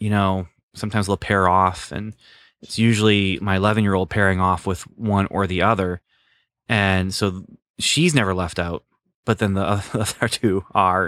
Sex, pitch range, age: male, 95-125 Hz, 20-39